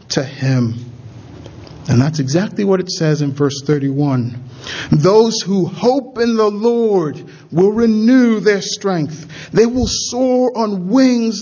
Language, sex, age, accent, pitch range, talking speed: English, male, 50-69, American, 130-175 Hz, 135 wpm